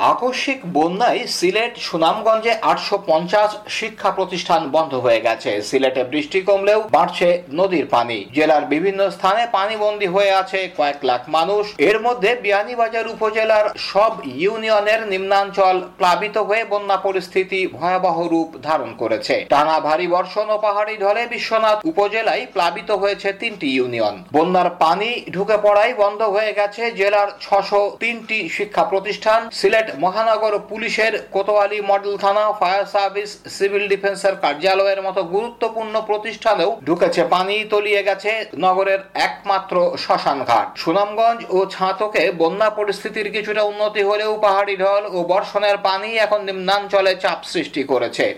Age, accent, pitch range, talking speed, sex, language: 50-69, native, 185-215 Hz, 70 wpm, male, Bengali